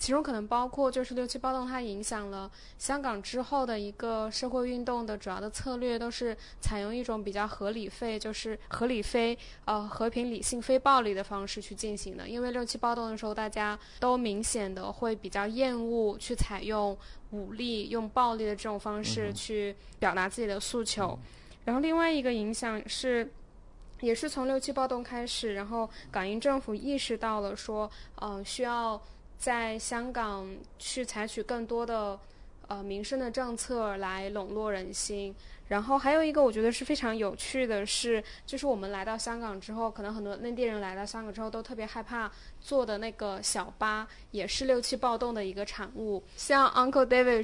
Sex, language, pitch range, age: female, Chinese, 210-245 Hz, 10-29